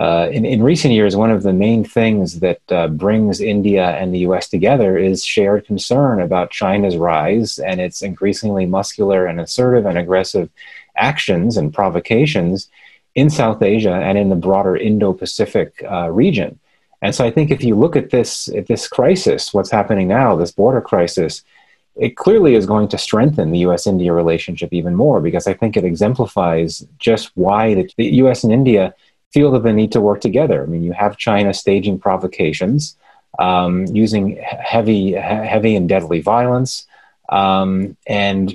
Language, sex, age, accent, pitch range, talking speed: English, male, 30-49, American, 95-115 Hz, 175 wpm